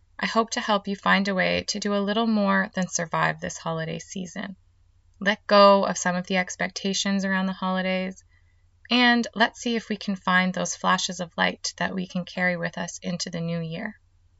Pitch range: 165-205 Hz